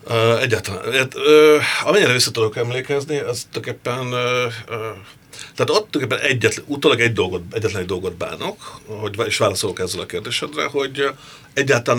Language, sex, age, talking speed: Hungarian, male, 50-69, 130 wpm